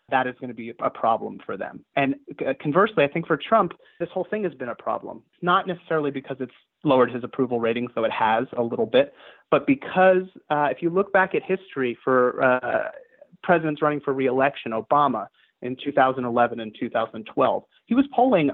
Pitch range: 120-160 Hz